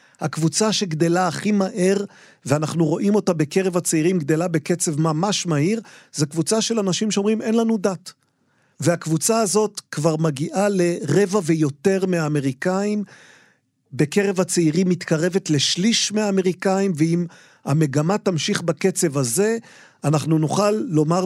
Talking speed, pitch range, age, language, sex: 115 wpm, 155-195 Hz, 50-69, Hebrew, male